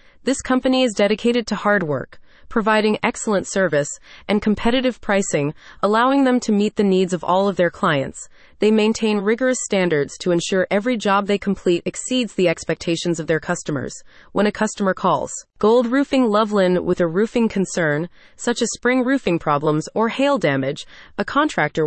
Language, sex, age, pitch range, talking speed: English, female, 30-49, 175-225 Hz, 165 wpm